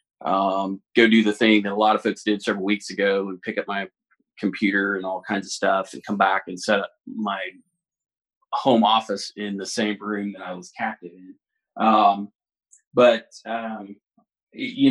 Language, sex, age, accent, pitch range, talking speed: English, male, 30-49, American, 100-115 Hz, 185 wpm